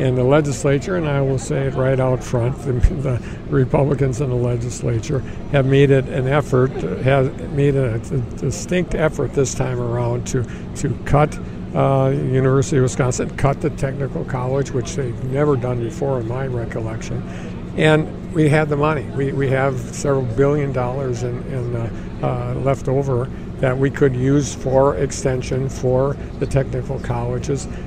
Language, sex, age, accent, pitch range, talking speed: English, male, 60-79, American, 125-140 Hz, 160 wpm